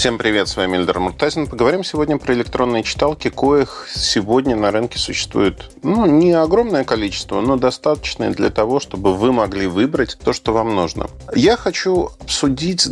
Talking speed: 165 wpm